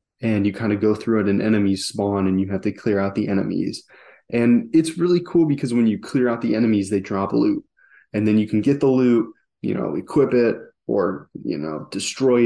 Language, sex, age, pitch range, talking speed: English, male, 20-39, 100-120 Hz, 225 wpm